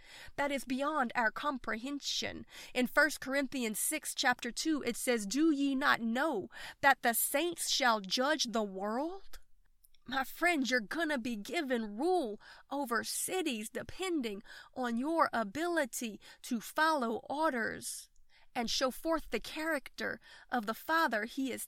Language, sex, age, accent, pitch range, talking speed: English, female, 30-49, American, 230-290 Hz, 140 wpm